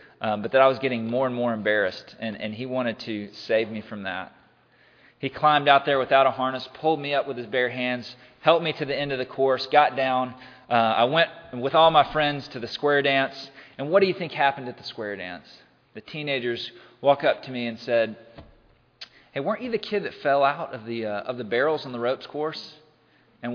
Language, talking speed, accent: English, 230 wpm, American